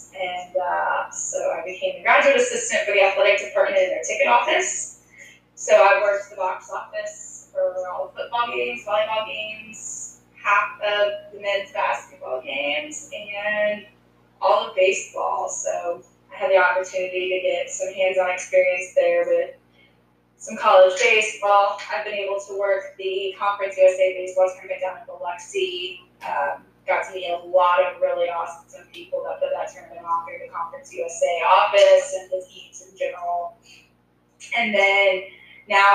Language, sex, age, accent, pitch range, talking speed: English, female, 10-29, American, 185-275 Hz, 160 wpm